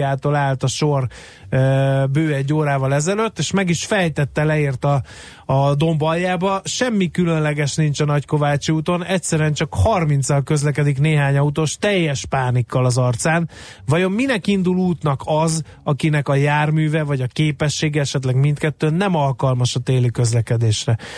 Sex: male